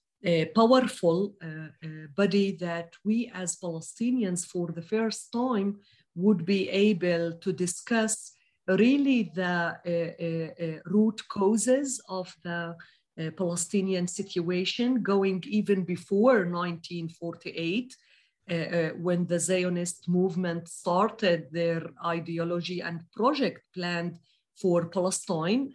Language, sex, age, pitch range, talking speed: English, female, 40-59, 170-205 Hz, 115 wpm